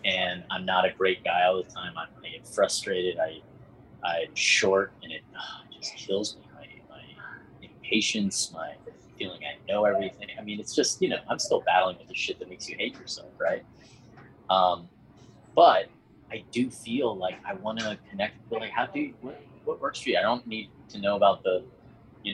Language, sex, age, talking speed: English, male, 30-49, 200 wpm